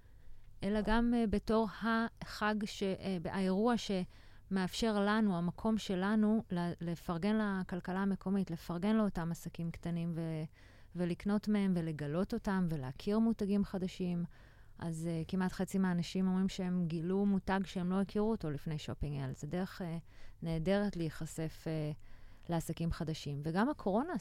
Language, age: Hebrew, 30-49